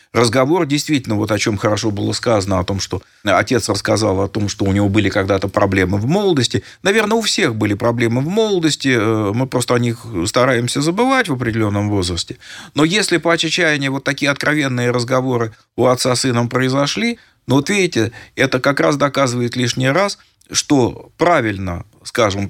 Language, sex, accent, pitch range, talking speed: Russian, male, native, 105-140 Hz, 170 wpm